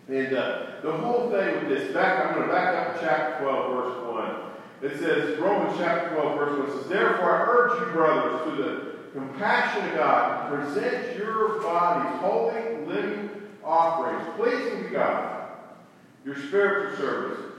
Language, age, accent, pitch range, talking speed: English, 50-69, American, 160-225 Hz, 165 wpm